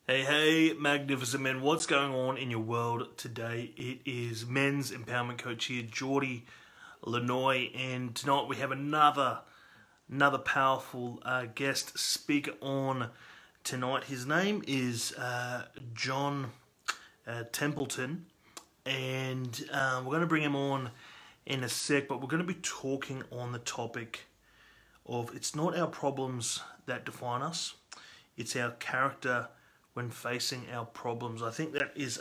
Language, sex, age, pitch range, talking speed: English, male, 30-49, 120-140 Hz, 145 wpm